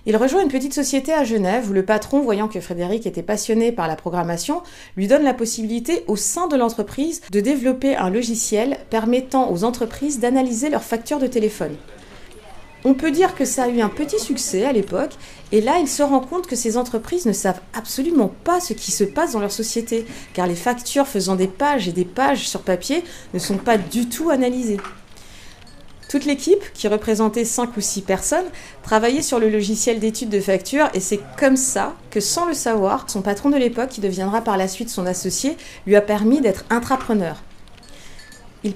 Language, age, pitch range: French, 30-49, 200-265 Hz